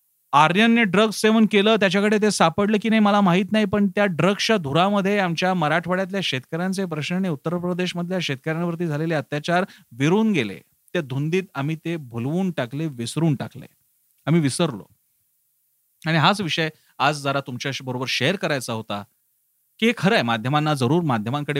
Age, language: 30-49, Marathi